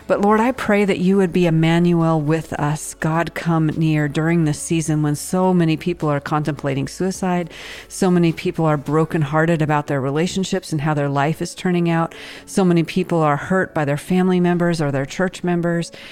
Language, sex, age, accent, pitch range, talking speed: English, female, 40-59, American, 155-180 Hz, 195 wpm